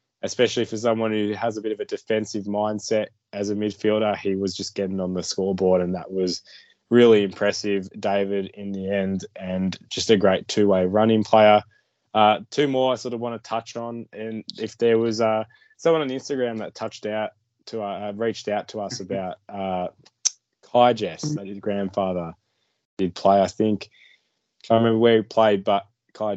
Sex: male